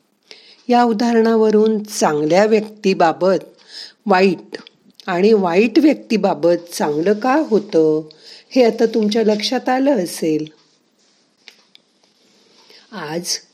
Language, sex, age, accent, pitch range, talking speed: Marathi, female, 50-69, native, 175-225 Hz, 80 wpm